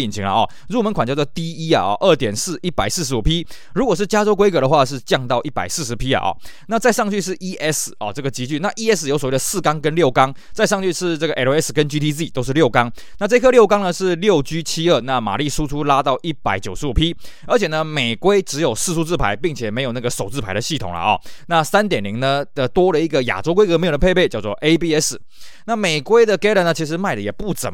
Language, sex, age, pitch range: Chinese, male, 20-39, 130-180 Hz